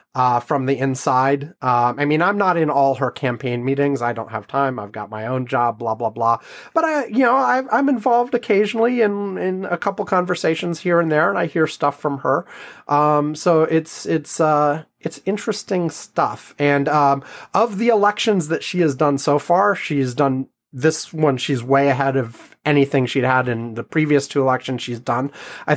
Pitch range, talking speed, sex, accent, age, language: 135-185 Hz, 200 wpm, male, American, 30-49, English